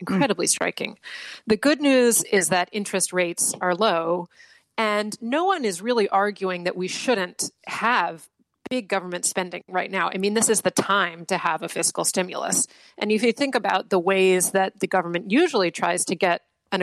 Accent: American